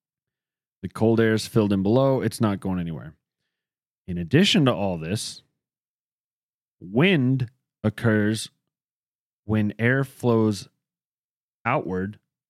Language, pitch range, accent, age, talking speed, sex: English, 95-115 Hz, American, 30-49, 105 wpm, male